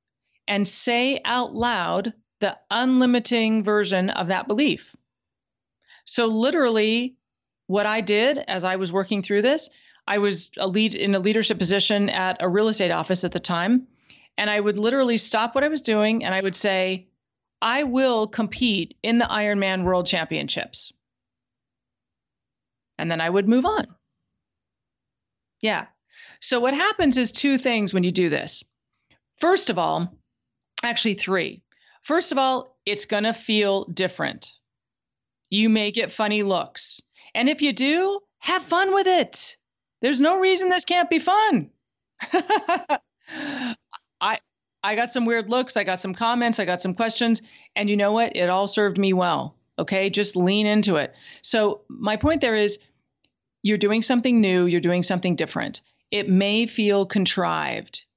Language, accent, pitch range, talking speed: English, American, 190-250 Hz, 160 wpm